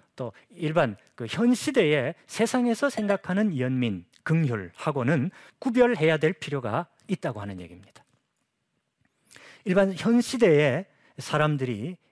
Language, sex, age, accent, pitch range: Korean, male, 40-59, native, 130-220 Hz